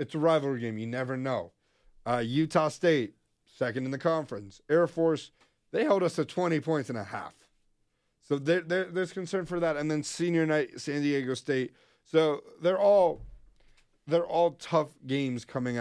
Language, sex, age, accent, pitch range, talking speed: English, male, 40-59, American, 125-150 Hz, 180 wpm